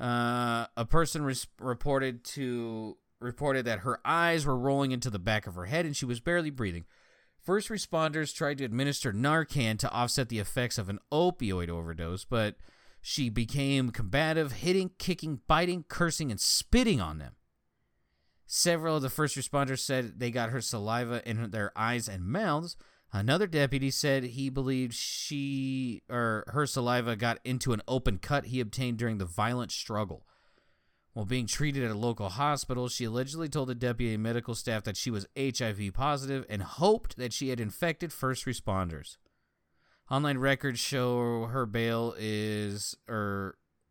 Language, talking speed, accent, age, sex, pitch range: English, 160 wpm, American, 30-49, male, 110-140 Hz